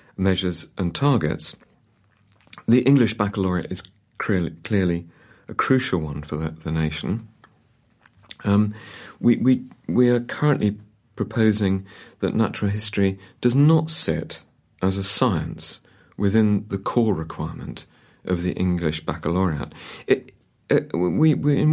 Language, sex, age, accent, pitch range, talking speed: English, male, 40-59, British, 90-115 Hz, 125 wpm